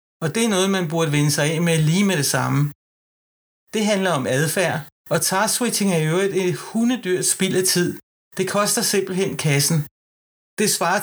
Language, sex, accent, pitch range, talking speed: Danish, male, native, 150-190 Hz, 180 wpm